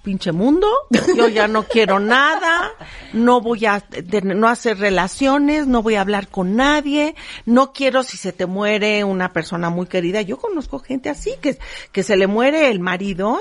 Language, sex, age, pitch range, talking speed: Spanish, female, 50-69, 185-270 Hz, 180 wpm